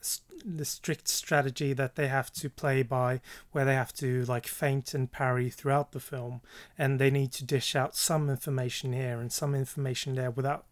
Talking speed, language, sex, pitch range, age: 190 wpm, English, male, 125-140 Hz, 30-49